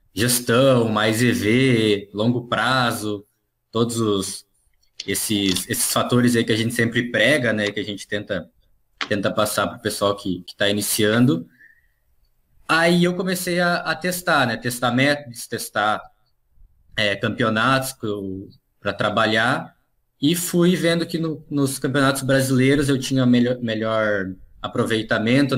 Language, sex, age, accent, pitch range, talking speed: Portuguese, male, 20-39, Brazilian, 105-135 Hz, 130 wpm